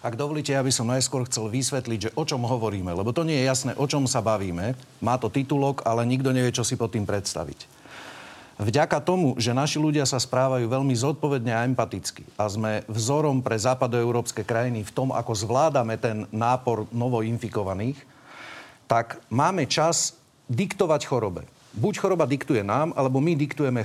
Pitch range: 115-145 Hz